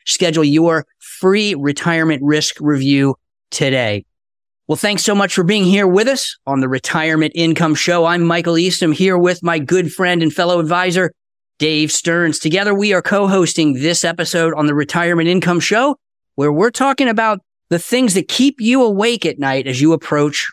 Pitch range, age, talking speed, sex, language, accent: 150-185 Hz, 40-59, 180 wpm, male, English, American